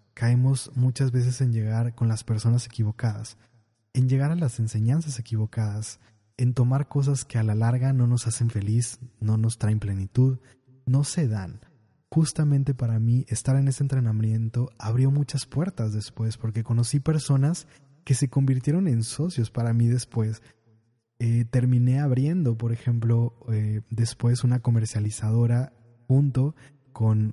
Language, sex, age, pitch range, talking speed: Spanish, male, 20-39, 115-135 Hz, 145 wpm